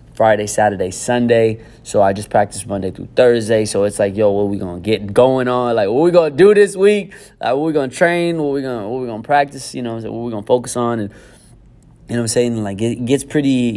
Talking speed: 280 wpm